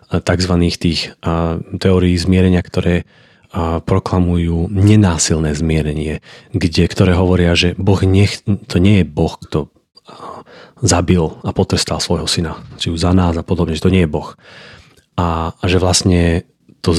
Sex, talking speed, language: male, 140 wpm, Slovak